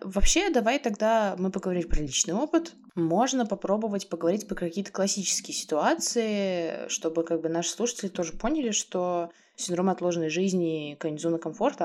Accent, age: native, 20-39